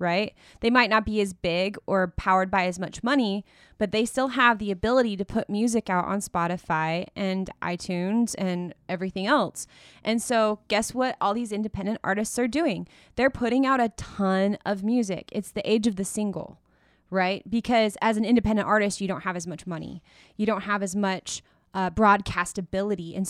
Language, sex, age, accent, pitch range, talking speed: English, female, 20-39, American, 185-225 Hz, 190 wpm